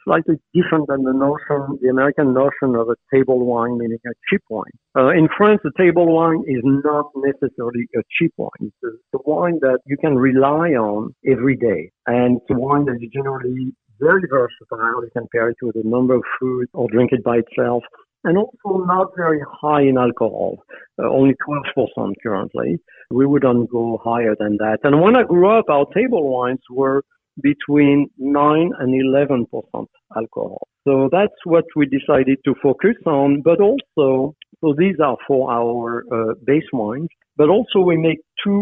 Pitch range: 120-150 Hz